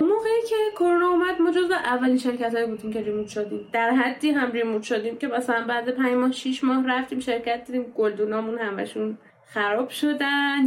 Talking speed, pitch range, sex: 175 wpm, 225-290 Hz, female